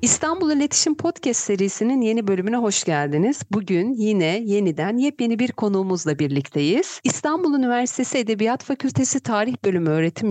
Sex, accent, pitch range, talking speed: female, native, 170-260 Hz, 130 wpm